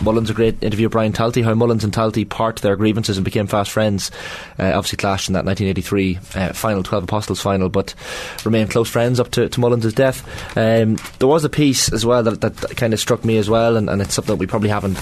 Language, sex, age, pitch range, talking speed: English, male, 20-39, 95-115 Hz, 235 wpm